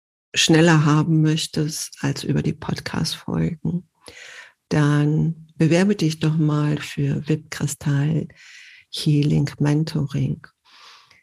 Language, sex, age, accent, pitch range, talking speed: German, female, 50-69, German, 145-165 Hz, 85 wpm